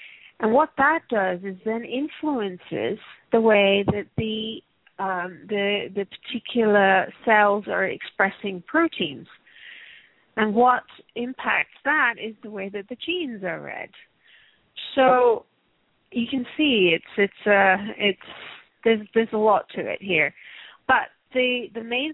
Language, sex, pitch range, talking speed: English, female, 195-235 Hz, 135 wpm